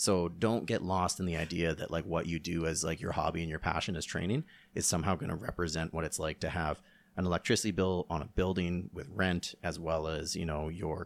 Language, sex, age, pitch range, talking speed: English, male, 30-49, 85-95 Hz, 245 wpm